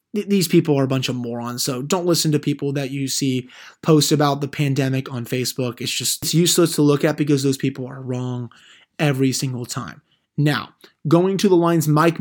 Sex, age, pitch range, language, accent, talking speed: male, 20-39, 140-165 Hz, English, American, 205 wpm